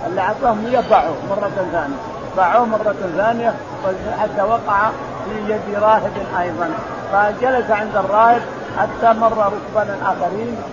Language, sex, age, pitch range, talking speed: Arabic, male, 50-69, 195-230 Hz, 115 wpm